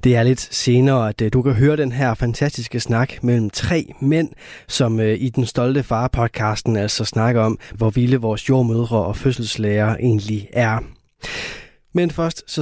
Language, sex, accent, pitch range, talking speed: Danish, male, native, 115-145 Hz, 160 wpm